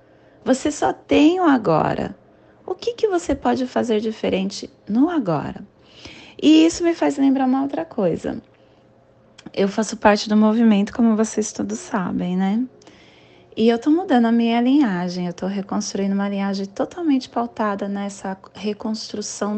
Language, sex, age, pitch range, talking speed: Portuguese, female, 20-39, 180-250 Hz, 145 wpm